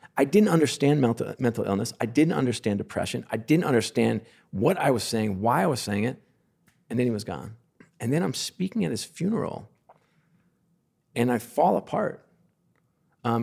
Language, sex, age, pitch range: English, male, 40-59, 105-145 Hz